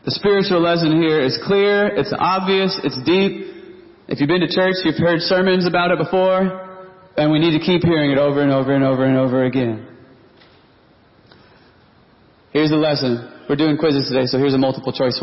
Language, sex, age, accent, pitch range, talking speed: English, male, 30-49, American, 145-195 Hz, 190 wpm